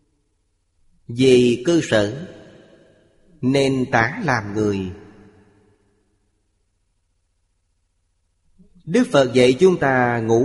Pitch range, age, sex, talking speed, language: 105-140 Hz, 20-39, male, 75 wpm, Vietnamese